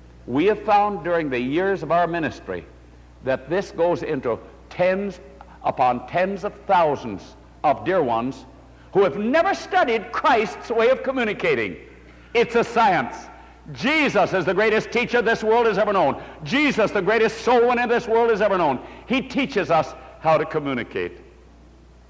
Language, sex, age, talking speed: English, male, 60-79, 155 wpm